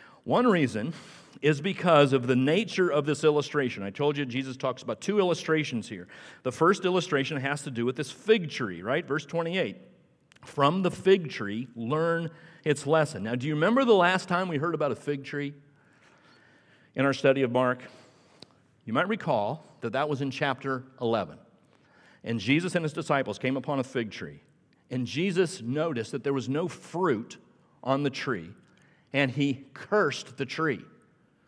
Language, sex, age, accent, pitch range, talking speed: English, male, 50-69, American, 135-195 Hz, 175 wpm